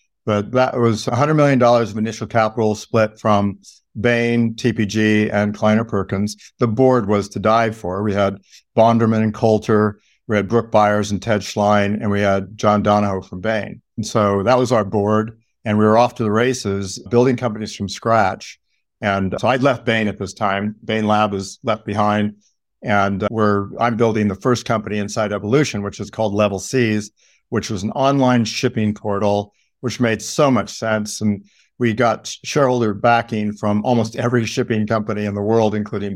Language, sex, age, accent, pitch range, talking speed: English, male, 60-79, American, 100-115 Hz, 180 wpm